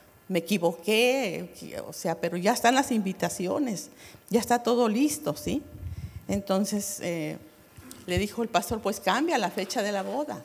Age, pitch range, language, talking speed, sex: 50-69, 190-245 Hz, English, 155 wpm, female